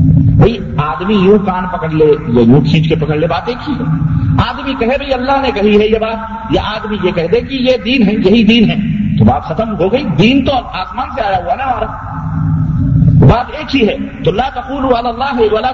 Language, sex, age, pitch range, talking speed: Urdu, male, 50-69, 160-240 Hz, 200 wpm